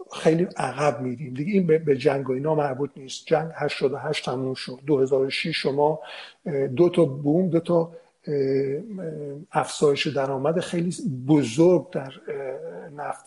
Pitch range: 145-180 Hz